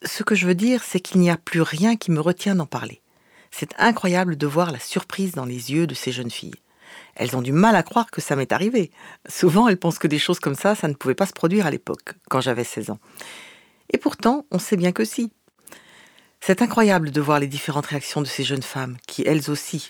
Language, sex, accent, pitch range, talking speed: French, female, French, 140-200 Hz, 240 wpm